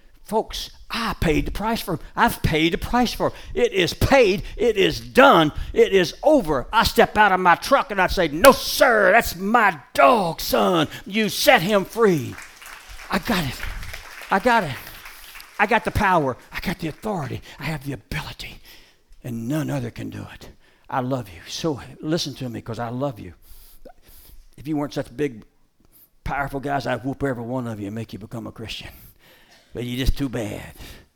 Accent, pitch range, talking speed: American, 105-140 Hz, 190 wpm